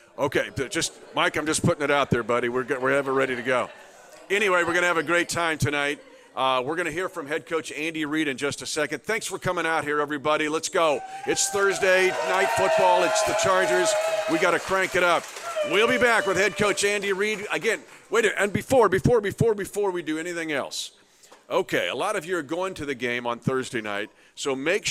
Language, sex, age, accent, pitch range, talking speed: English, male, 50-69, American, 135-185 Hz, 230 wpm